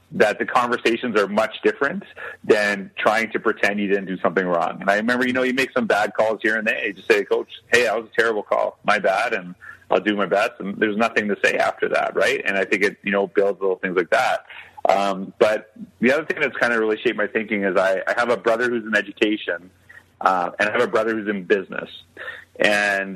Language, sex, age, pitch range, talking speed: English, male, 30-49, 95-115 Hz, 245 wpm